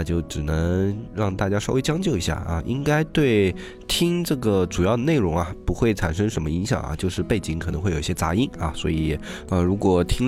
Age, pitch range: 20-39, 85-110 Hz